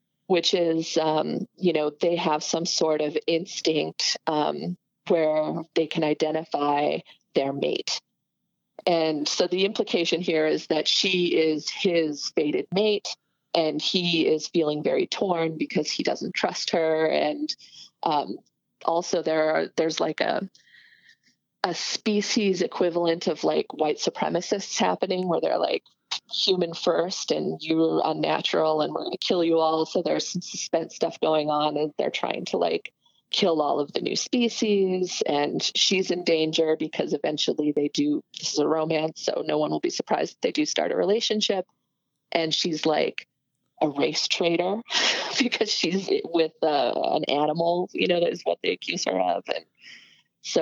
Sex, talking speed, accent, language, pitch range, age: female, 160 wpm, American, English, 155-190 Hz, 30-49